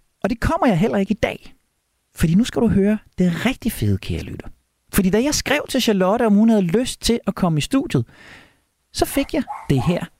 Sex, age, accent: male, 40-59, native